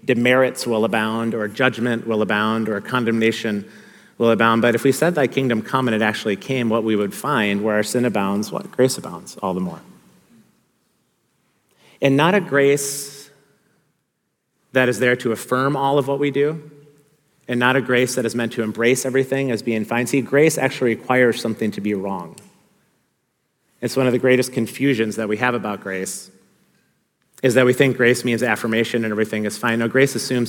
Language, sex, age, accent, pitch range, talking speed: English, male, 30-49, American, 110-130 Hz, 190 wpm